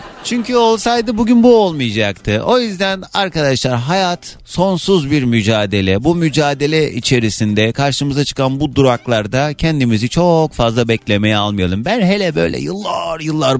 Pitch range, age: 110-175 Hz, 40-59